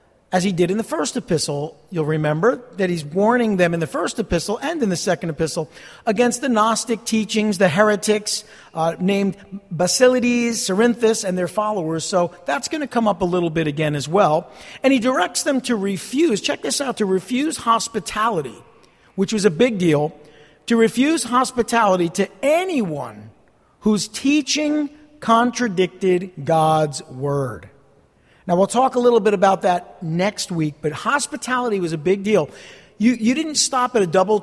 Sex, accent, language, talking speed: male, American, English, 170 wpm